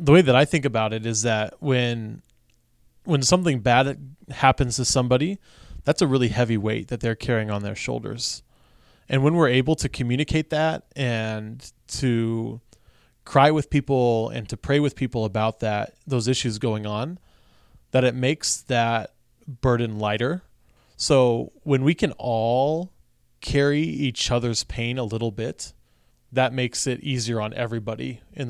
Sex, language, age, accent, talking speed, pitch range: male, English, 20-39, American, 160 wpm, 115-135 Hz